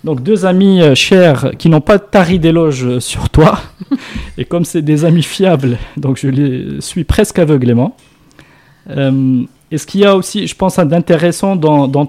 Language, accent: French, French